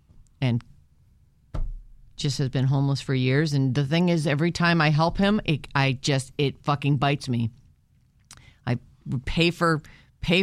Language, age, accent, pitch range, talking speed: English, 40-59, American, 125-170 Hz, 155 wpm